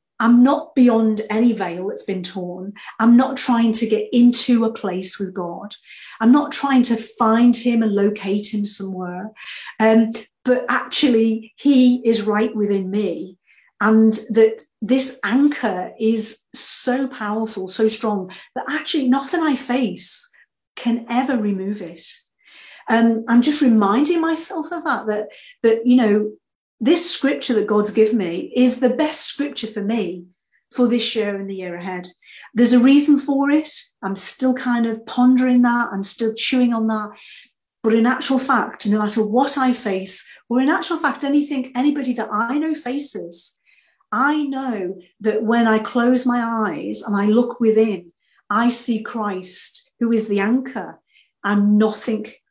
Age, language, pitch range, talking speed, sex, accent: 40-59, English, 210-255 Hz, 160 wpm, female, British